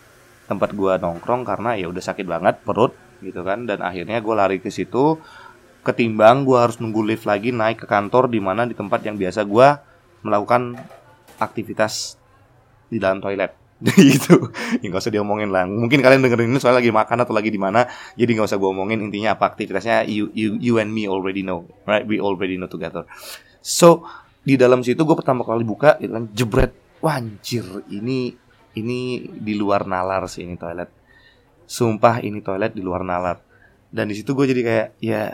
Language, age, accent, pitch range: Indonesian, 20-39, native, 100-125 Hz